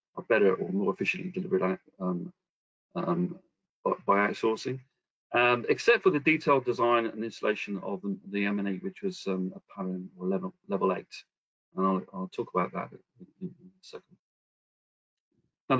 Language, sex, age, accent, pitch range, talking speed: English, male, 40-59, British, 95-160 Hz, 155 wpm